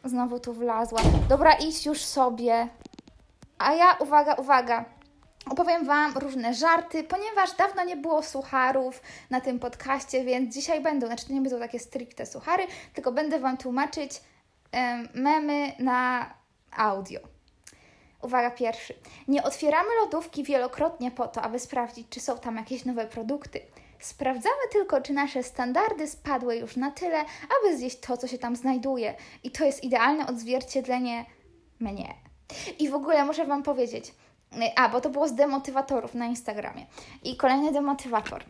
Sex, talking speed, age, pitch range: female, 150 wpm, 20-39, 245-310 Hz